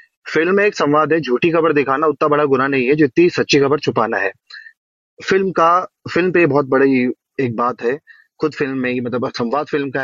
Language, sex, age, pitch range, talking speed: Hindi, male, 30-49, 135-160 Hz, 205 wpm